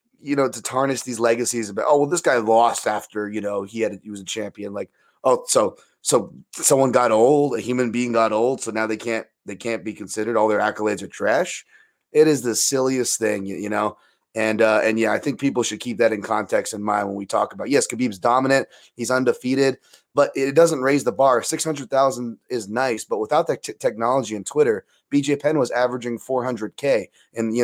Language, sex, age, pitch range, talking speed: English, male, 30-49, 115-150 Hz, 215 wpm